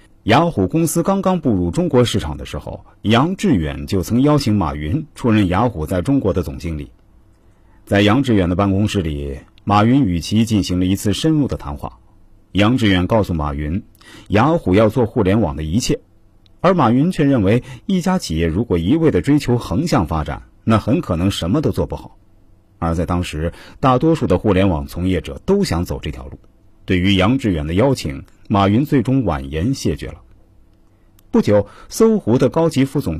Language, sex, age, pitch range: Chinese, male, 50-69, 90-125 Hz